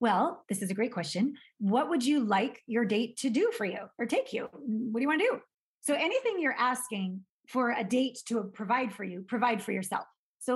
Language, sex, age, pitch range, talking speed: English, female, 30-49, 210-260 Hz, 225 wpm